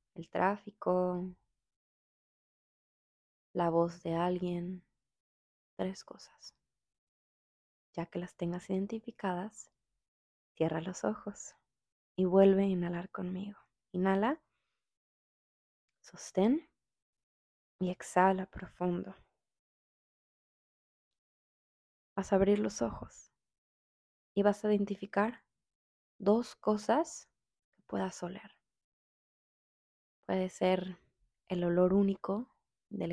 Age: 20-39